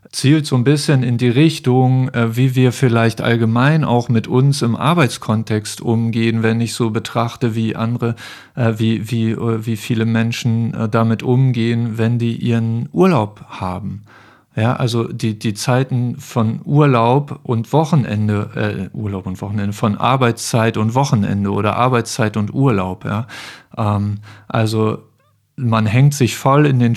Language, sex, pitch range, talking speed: German, male, 115-130 Hz, 145 wpm